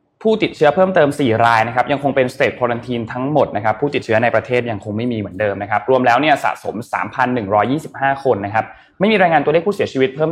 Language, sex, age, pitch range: Thai, male, 20-39, 110-145 Hz